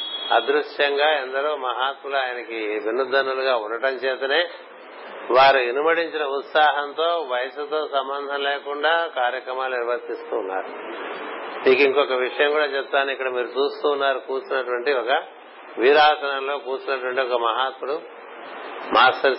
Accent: native